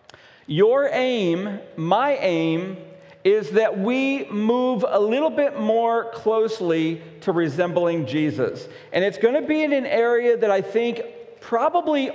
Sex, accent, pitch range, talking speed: male, American, 190-255 Hz, 140 wpm